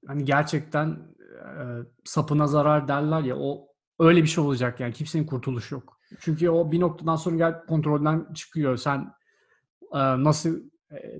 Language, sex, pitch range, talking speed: Turkish, male, 135-165 Hz, 145 wpm